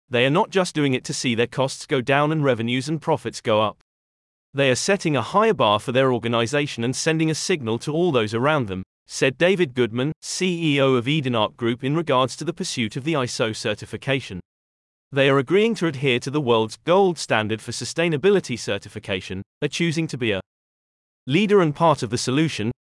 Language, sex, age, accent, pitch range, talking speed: English, male, 30-49, British, 115-160 Hz, 200 wpm